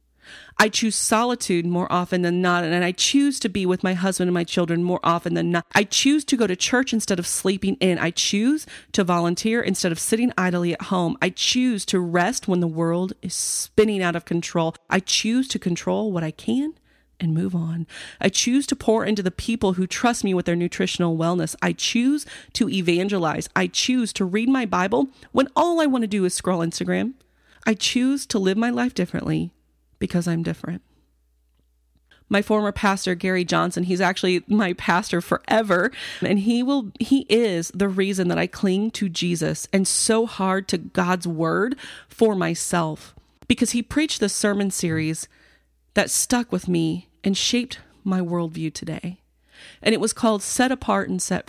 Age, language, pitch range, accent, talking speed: 30-49, English, 175-225 Hz, American, 185 wpm